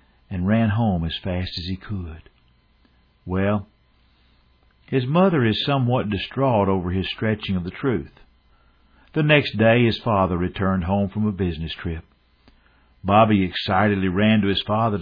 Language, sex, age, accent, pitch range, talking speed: English, male, 60-79, American, 80-120 Hz, 150 wpm